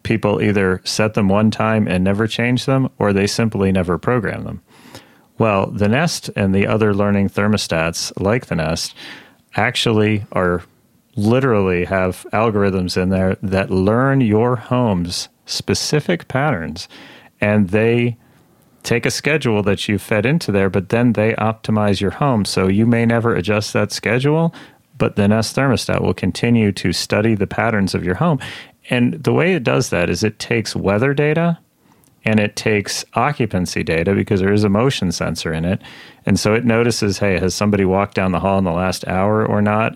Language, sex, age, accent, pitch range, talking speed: English, male, 30-49, American, 95-115 Hz, 175 wpm